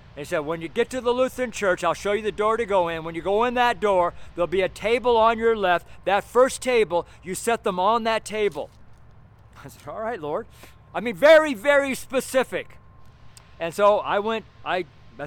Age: 50-69